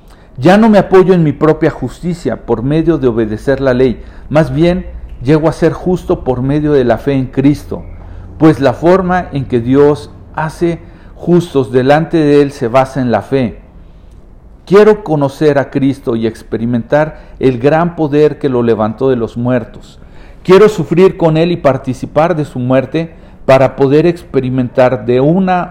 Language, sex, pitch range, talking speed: Spanish, male, 125-170 Hz, 170 wpm